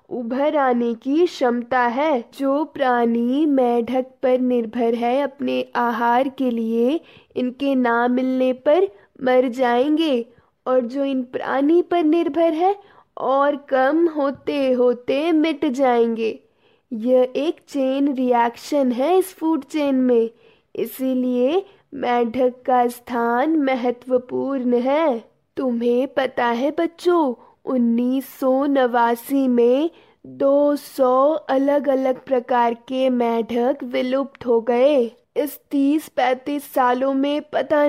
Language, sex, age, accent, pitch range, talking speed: Hindi, female, 20-39, native, 245-295 Hz, 110 wpm